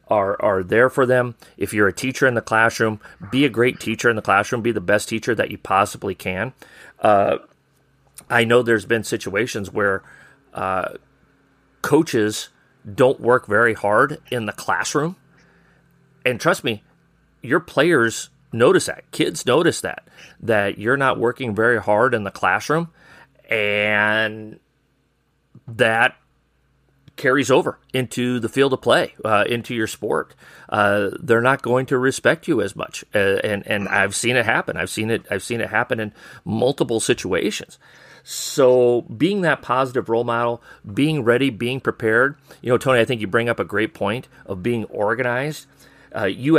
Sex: male